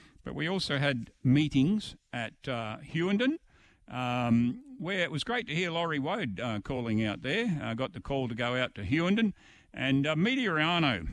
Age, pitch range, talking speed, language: 50-69, 110-140 Hz, 180 wpm, English